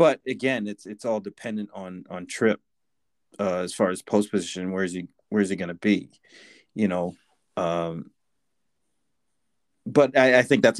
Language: English